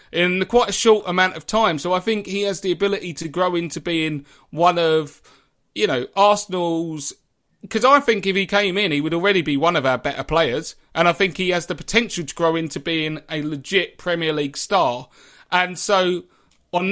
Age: 30-49